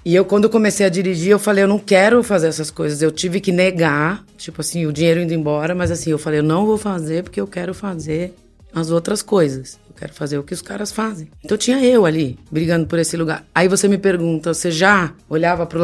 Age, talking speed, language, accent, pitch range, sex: 20-39, 240 wpm, Portuguese, Brazilian, 160-190 Hz, female